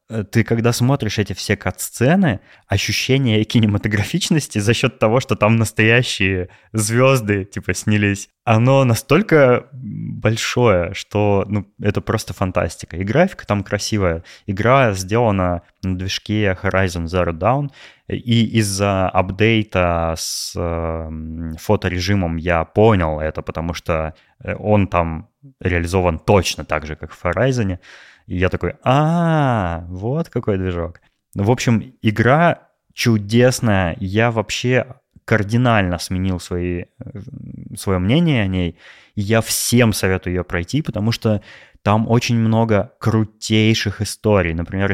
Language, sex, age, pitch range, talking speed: Russian, male, 20-39, 90-115 Hz, 120 wpm